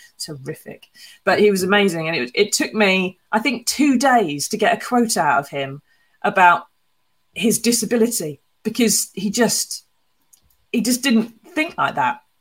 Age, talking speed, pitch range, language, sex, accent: 30-49, 160 wpm, 175-230 Hz, English, female, British